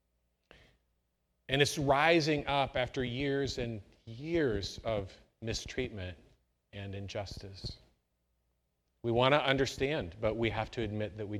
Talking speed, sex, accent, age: 120 wpm, male, American, 40-59